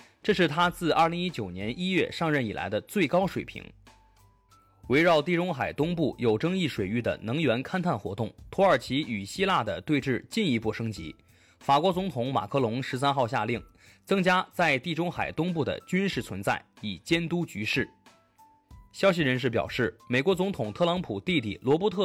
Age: 20-39